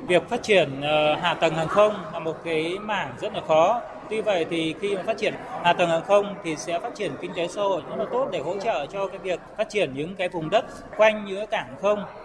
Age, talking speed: 20-39, 255 wpm